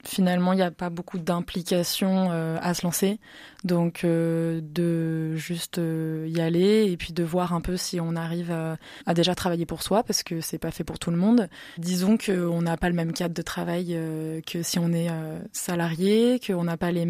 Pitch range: 170-190 Hz